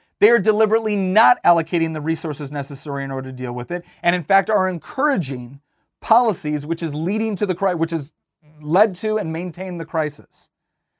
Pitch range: 160-205 Hz